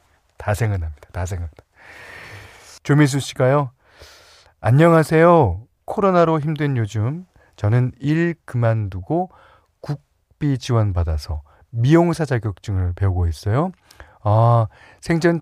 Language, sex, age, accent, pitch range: Korean, male, 40-59, native, 90-145 Hz